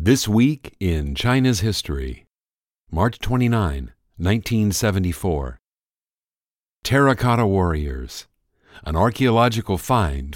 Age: 50-69